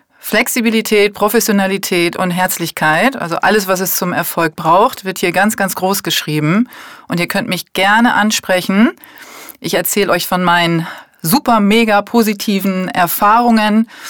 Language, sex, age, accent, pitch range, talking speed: German, female, 30-49, German, 180-230 Hz, 135 wpm